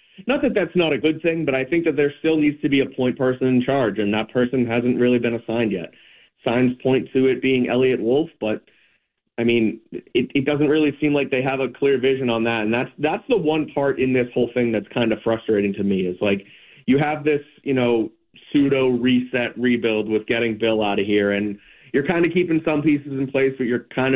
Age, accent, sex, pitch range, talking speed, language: 30-49, American, male, 115-140 Hz, 240 wpm, English